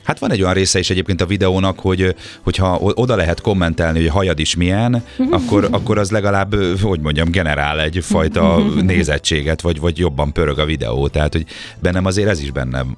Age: 30-49